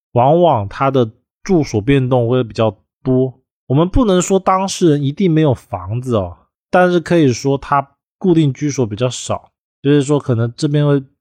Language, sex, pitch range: Chinese, male, 110-150 Hz